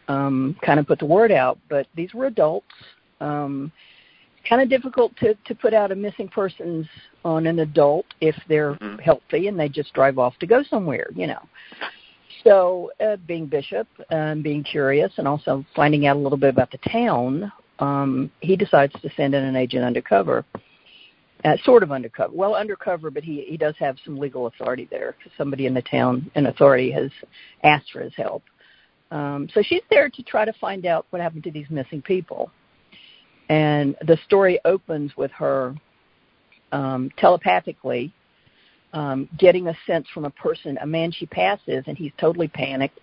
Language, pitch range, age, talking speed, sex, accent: English, 140-180 Hz, 50-69, 180 wpm, female, American